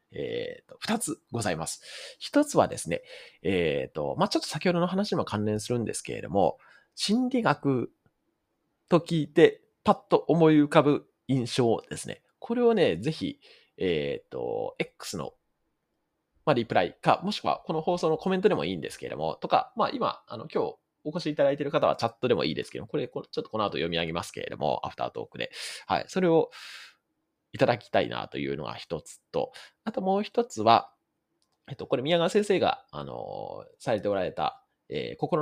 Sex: male